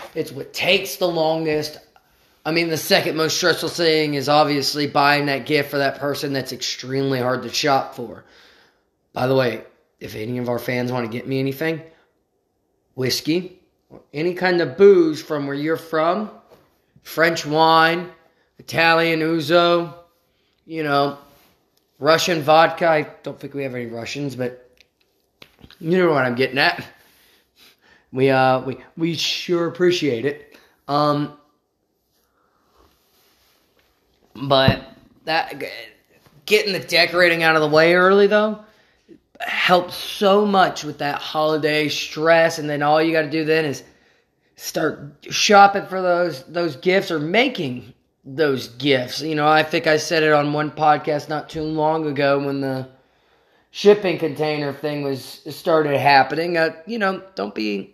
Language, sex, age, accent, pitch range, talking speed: English, male, 20-39, American, 140-165 Hz, 150 wpm